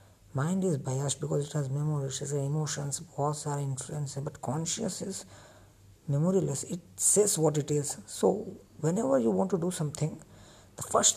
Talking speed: 160 wpm